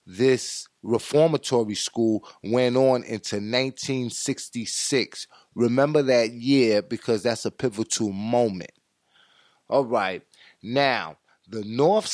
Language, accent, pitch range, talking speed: English, American, 115-145 Hz, 100 wpm